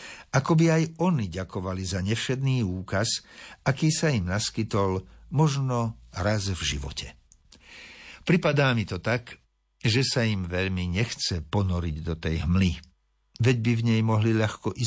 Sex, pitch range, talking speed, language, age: male, 90-125 Hz, 145 wpm, Slovak, 60-79